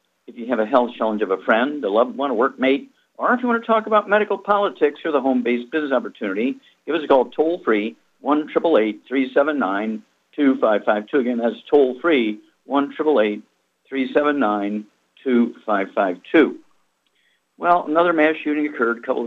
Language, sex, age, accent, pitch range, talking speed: English, male, 50-69, American, 115-150 Hz, 180 wpm